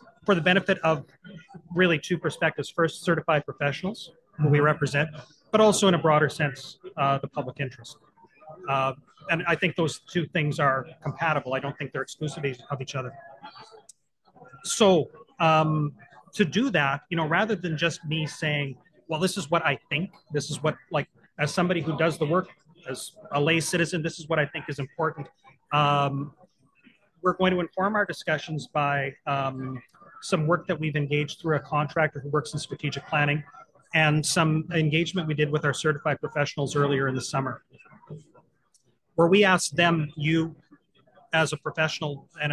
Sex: male